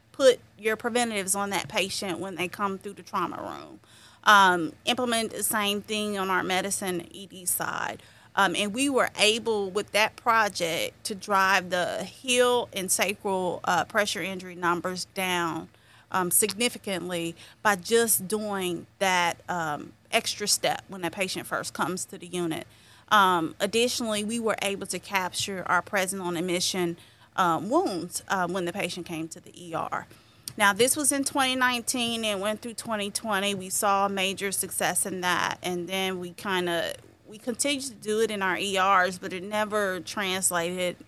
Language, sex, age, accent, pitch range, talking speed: English, female, 30-49, American, 175-215 Hz, 165 wpm